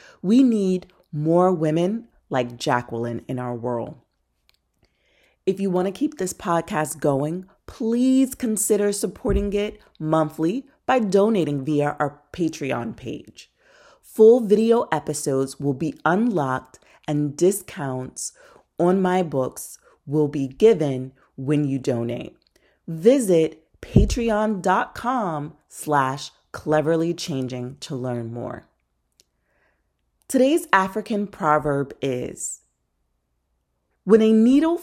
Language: English